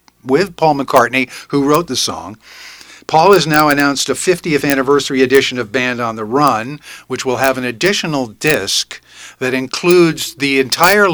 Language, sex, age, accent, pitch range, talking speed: English, male, 50-69, American, 120-155 Hz, 160 wpm